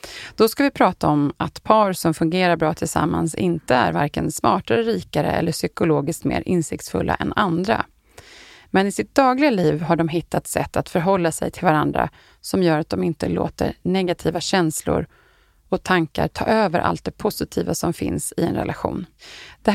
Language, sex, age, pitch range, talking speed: Swedish, female, 30-49, 165-195 Hz, 175 wpm